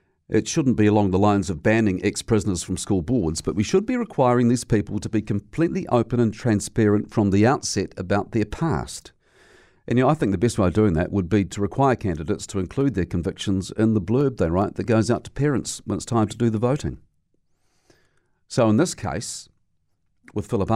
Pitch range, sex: 95-120 Hz, male